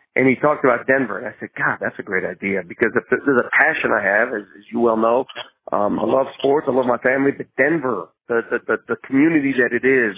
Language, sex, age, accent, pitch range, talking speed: English, male, 40-59, American, 125-155 Hz, 255 wpm